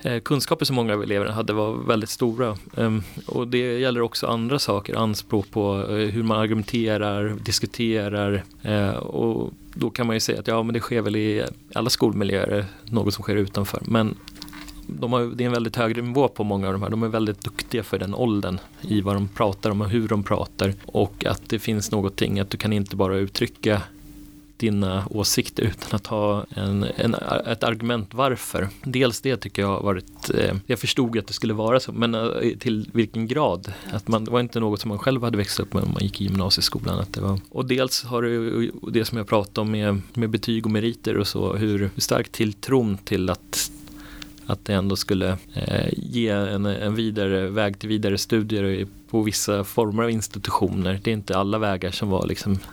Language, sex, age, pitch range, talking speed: Swedish, male, 30-49, 100-115 Hz, 205 wpm